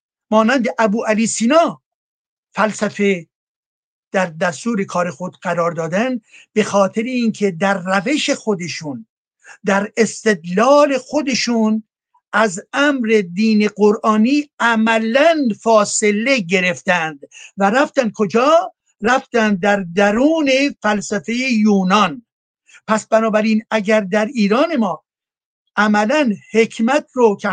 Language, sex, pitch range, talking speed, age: Persian, male, 200-240 Hz, 100 wpm, 60-79